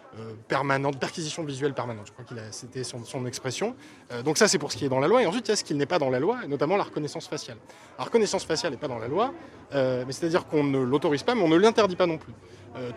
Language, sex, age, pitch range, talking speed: French, male, 20-39, 130-155 Hz, 290 wpm